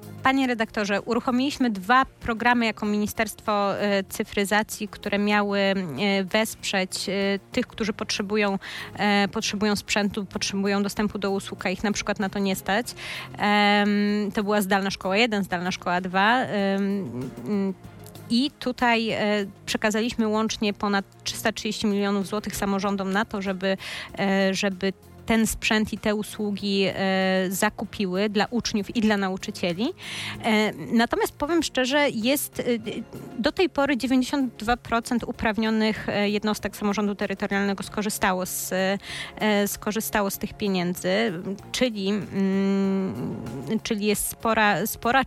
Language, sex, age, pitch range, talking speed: Polish, female, 30-49, 200-225 Hz, 105 wpm